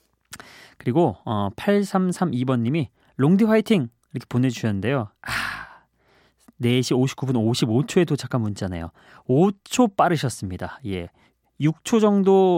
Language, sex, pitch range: Korean, male, 115-175 Hz